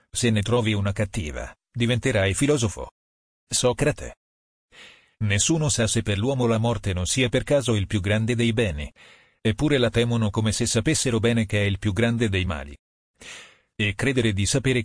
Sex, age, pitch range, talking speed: male, 40-59, 100-120 Hz, 170 wpm